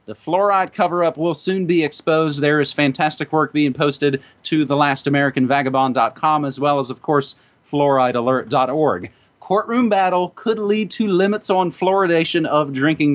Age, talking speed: 30-49, 140 wpm